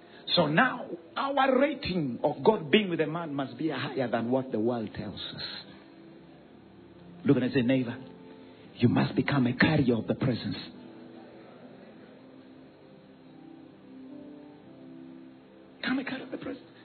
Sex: male